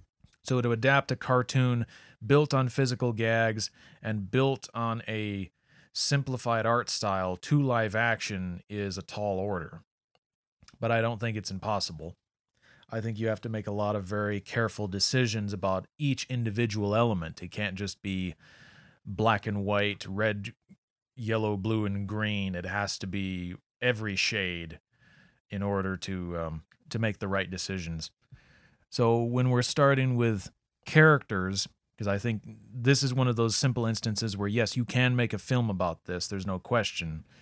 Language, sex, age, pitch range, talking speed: English, male, 30-49, 100-125 Hz, 160 wpm